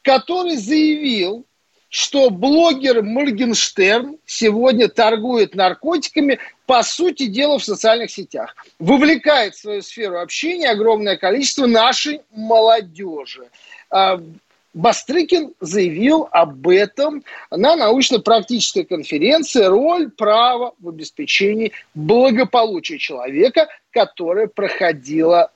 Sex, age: male, 40-59